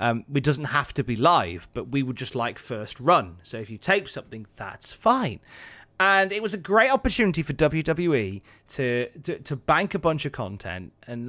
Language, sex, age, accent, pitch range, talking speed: English, male, 30-49, British, 120-175 Hz, 200 wpm